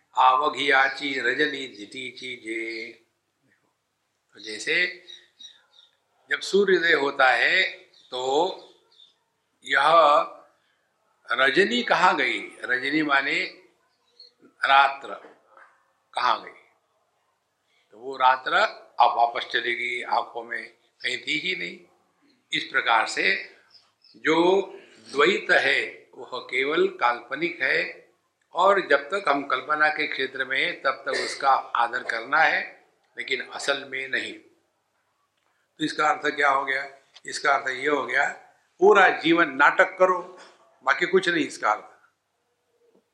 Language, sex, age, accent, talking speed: English, male, 60-79, Indian, 115 wpm